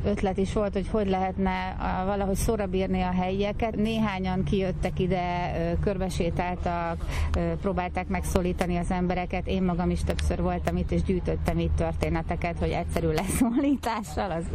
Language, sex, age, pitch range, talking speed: Hungarian, female, 30-49, 160-185 Hz, 135 wpm